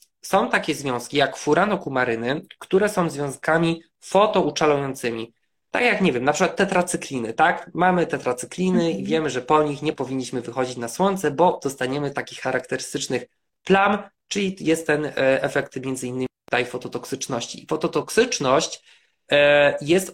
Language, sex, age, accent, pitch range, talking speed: Polish, male, 20-39, native, 135-175 Hz, 130 wpm